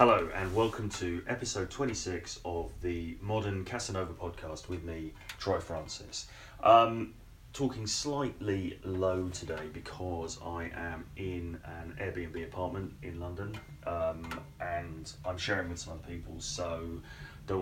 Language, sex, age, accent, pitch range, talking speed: English, male, 30-49, British, 85-100 Hz, 135 wpm